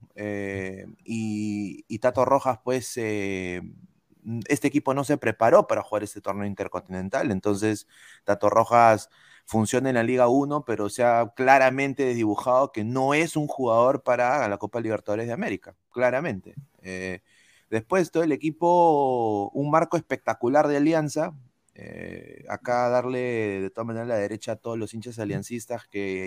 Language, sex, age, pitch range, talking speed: Spanish, male, 30-49, 105-135 Hz, 150 wpm